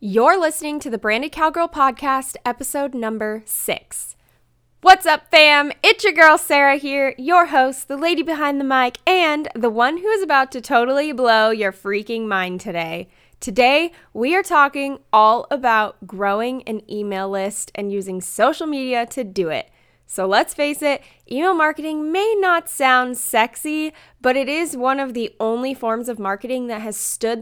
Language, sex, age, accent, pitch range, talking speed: English, female, 10-29, American, 220-295 Hz, 170 wpm